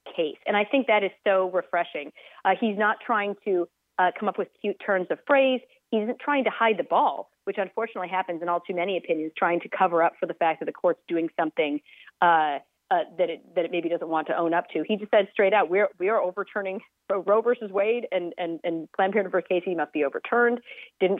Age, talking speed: 40-59, 240 wpm